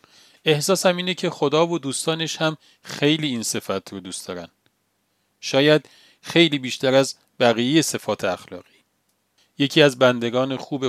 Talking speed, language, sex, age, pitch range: 130 wpm, Persian, male, 40-59, 115-150 Hz